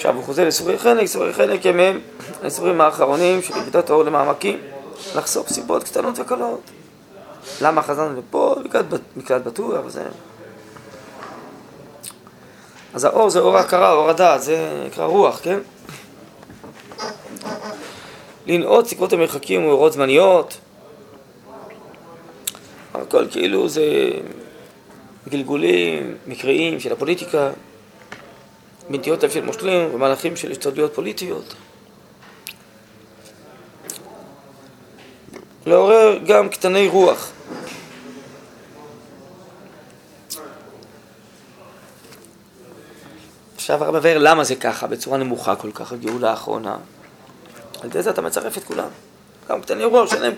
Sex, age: male, 20-39